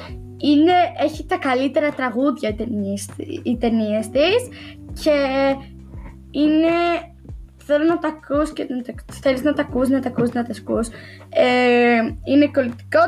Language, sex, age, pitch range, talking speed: Greek, female, 20-39, 235-295 Hz, 130 wpm